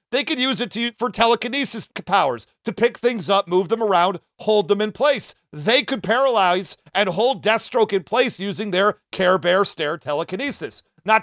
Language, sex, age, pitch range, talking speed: English, male, 40-59, 195-245 Hz, 180 wpm